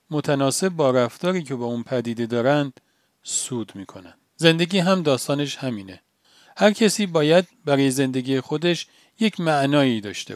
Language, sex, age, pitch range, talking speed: Persian, male, 40-59, 130-175 Hz, 135 wpm